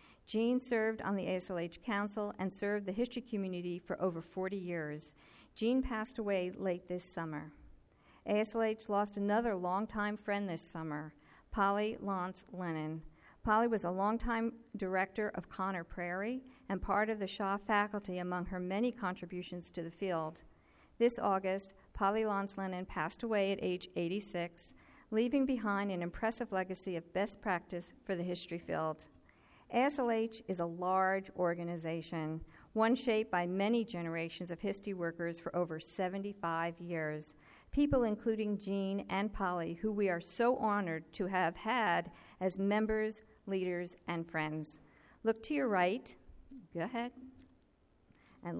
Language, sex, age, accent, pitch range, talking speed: English, female, 50-69, American, 175-220 Hz, 145 wpm